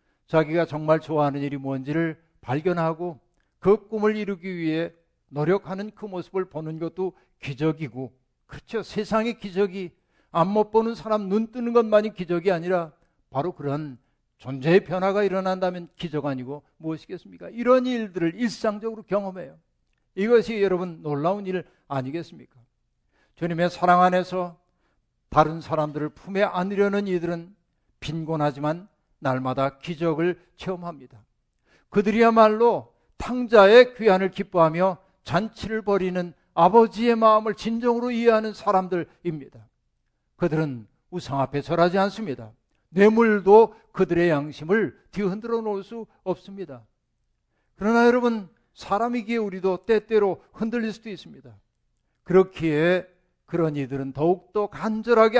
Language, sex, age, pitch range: Korean, male, 60-79, 155-205 Hz